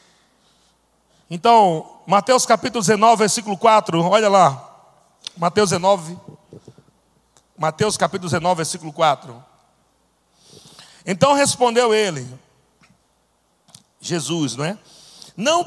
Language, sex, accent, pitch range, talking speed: Portuguese, male, Brazilian, 155-210 Hz, 85 wpm